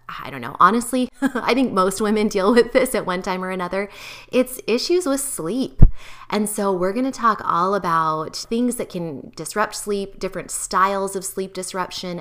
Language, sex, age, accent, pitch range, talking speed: English, female, 20-39, American, 170-210 Hz, 180 wpm